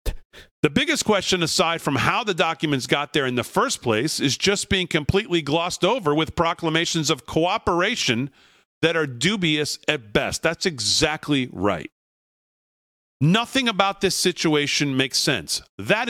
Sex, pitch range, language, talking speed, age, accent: male, 140-185 Hz, English, 145 wpm, 40-59, American